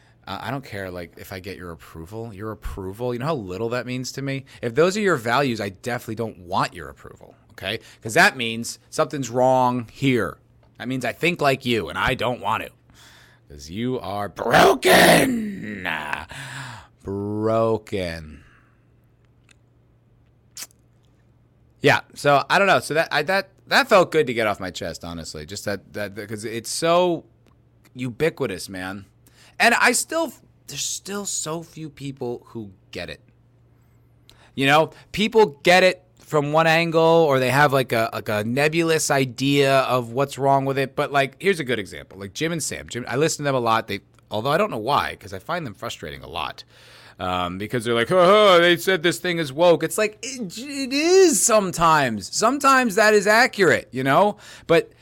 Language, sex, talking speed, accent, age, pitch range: English, male, 185 wpm, American, 30-49, 115-160 Hz